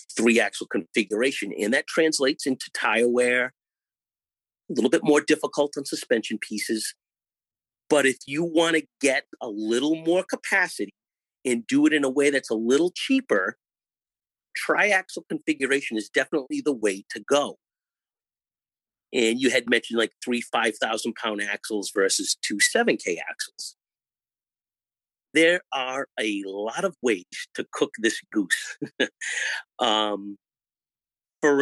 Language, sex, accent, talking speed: English, male, American, 135 wpm